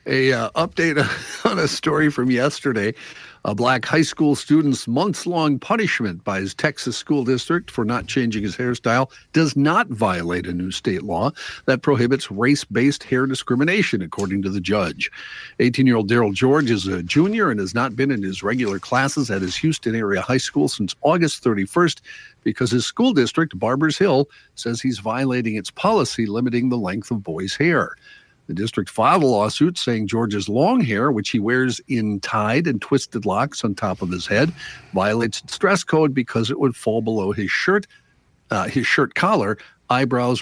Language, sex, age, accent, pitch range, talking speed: English, male, 50-69, American, 105-140 Hz, 175 wpm